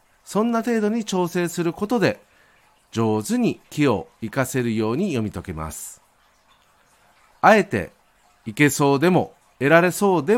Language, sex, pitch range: Japanese, male, 115-190 Hz